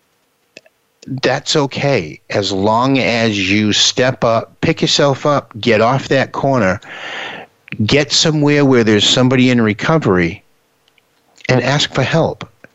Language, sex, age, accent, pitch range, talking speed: English, male, 50-69, American, 115-150 Hz, 120 wpm